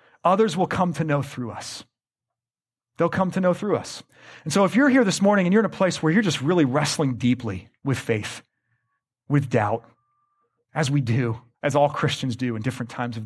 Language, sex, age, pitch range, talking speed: English, male, 30-49, 120-155 Hz, 210 wpm